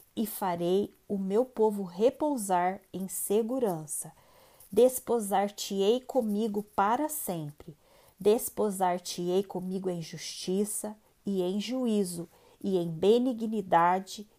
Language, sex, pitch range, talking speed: Portuguese, female, 180-225 Hz, 90 wpm